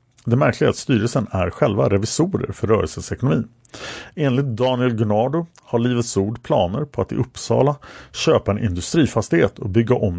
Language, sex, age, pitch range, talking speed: Swedish, male, 50-69, 105-130 Hz, 165 wpm